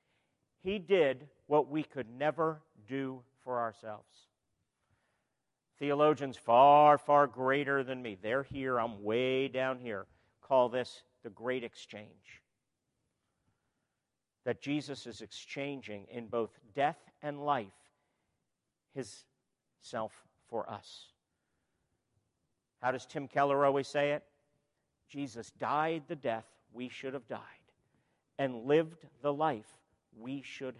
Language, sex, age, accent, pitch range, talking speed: English, male, 50-69, American, 130-210 Hz, 115 wpm